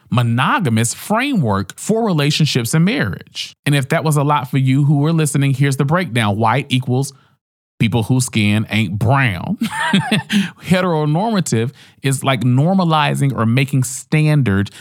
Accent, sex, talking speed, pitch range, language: American, male, 140 wpm, 120-160 Hz, English